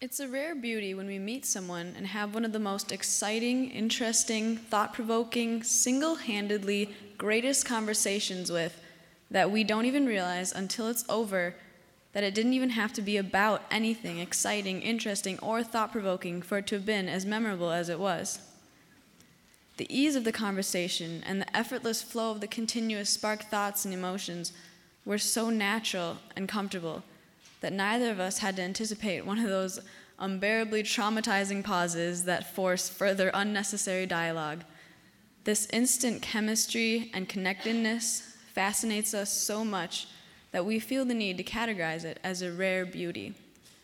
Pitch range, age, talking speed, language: 185-225 Hz, 10-29, 155 wpm, English